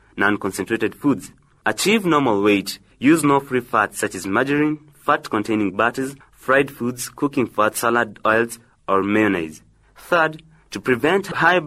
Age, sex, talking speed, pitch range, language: 30-49, male, 140 wpm, 105-140 Hz, English